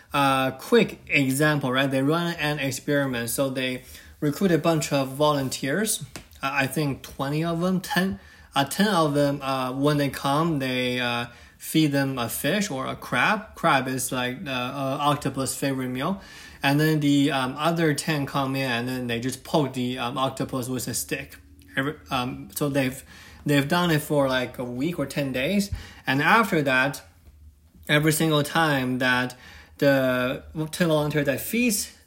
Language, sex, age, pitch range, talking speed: English, male, 20-39, 130-150 Hz, 175 wpm